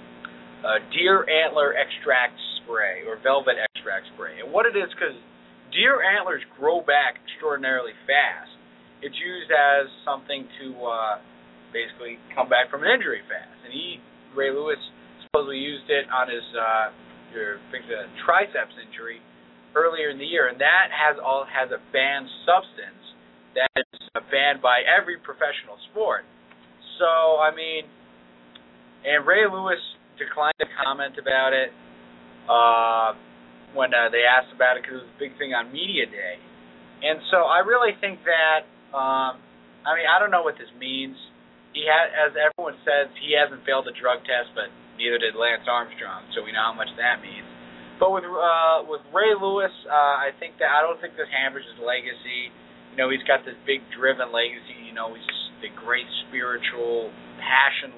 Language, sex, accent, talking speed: English, male, American, 165 wpm